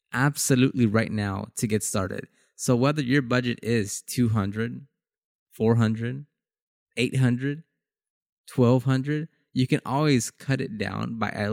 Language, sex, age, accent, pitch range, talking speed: English, male, 20-39, American, 110-135 Hz, 140 wpm